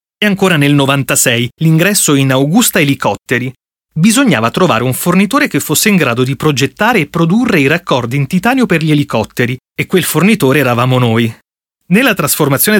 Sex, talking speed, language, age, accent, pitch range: male, 160 wpm, Italian, 30-49, native, 130-190 Hz